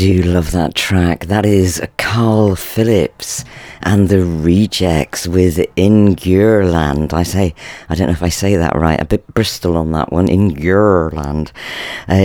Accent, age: British, 40-59